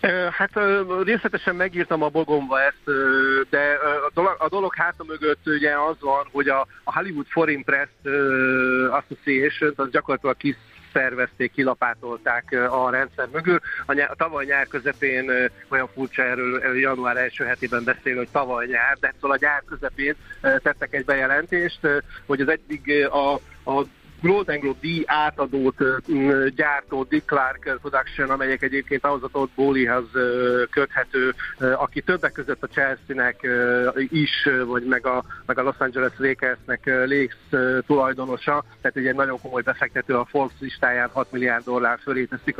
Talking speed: 140 wpm